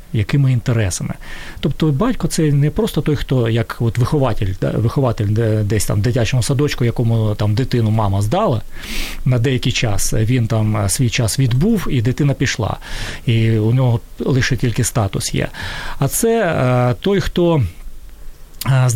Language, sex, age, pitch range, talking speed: Ukrainian, male, 40-59, 115-150 Hz, 145 wpm